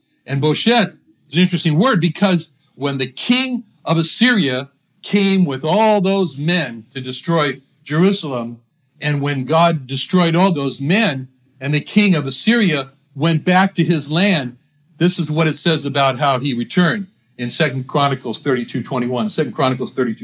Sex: male